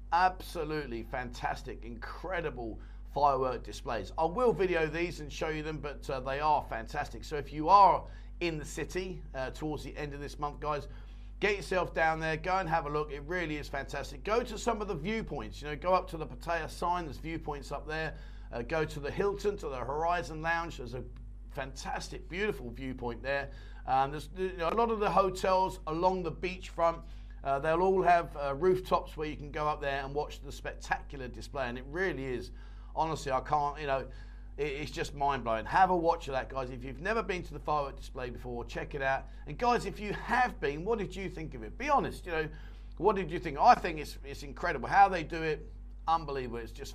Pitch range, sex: 130-175 Hz, male